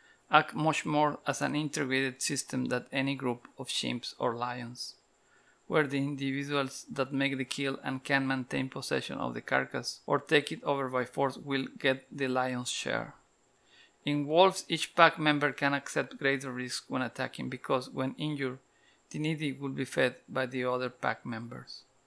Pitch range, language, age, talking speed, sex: 130-155 Hz, English, 50-69, 170 wpm, male